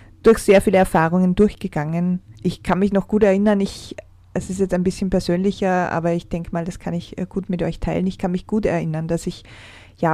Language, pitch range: German, 170-195 Hz